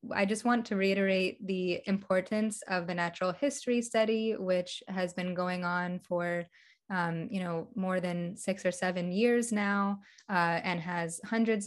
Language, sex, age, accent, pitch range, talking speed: English, female, 20-39, American, 175-200 Hz, 165 wpm